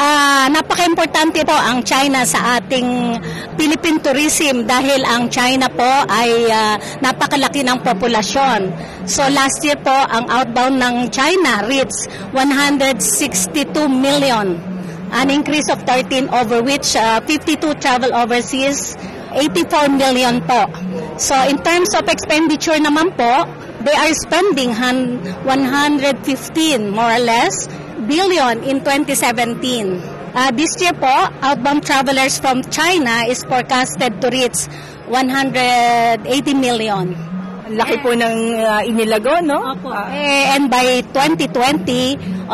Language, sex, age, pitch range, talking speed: Filipino, female, 40-59, 235-285 Hz, 115 wpm